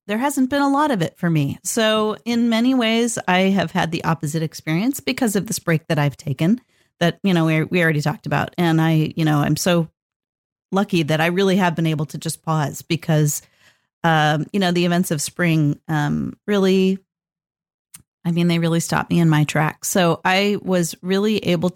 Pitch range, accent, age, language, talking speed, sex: 160-215 Hz, American, 40-59, English, 205 wpm, female